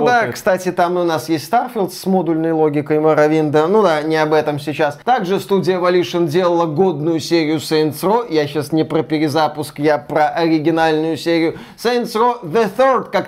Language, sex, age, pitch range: Russian, male, 20-39, 165-230 Hz